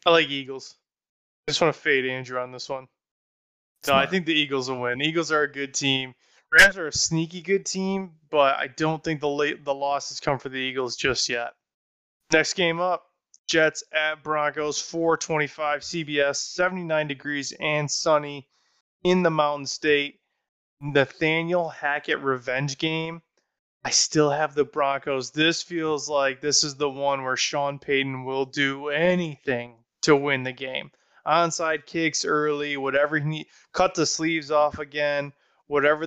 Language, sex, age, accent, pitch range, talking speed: English, male, 20-39, American, 135-160 Hz, 160 wpm